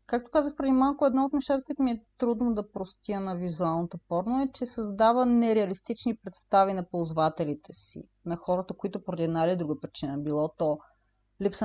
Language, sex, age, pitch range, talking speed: Bulgarian, female, 30-49, 165-215 Hz, 180 wpm